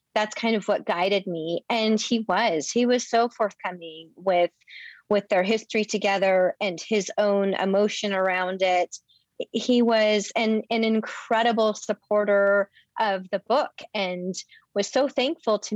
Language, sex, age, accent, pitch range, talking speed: English, female, 30-49, American, 185-225 Hz, 145 wpm